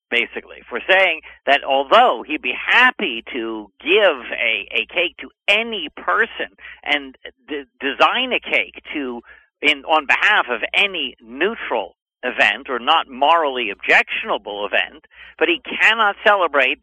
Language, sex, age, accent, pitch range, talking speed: English, male, 50-69, American, 145-200 Hz, 135 wpm